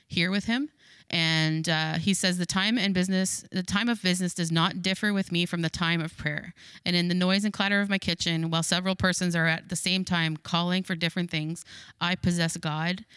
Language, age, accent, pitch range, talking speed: English, 20-39, American, 160-180 Hz, 225 wpm